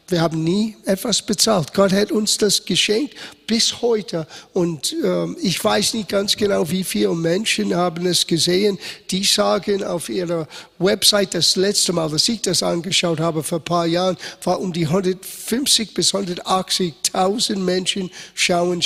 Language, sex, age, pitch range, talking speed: German, male, 50-69, 170-205 Hz, 160 wpm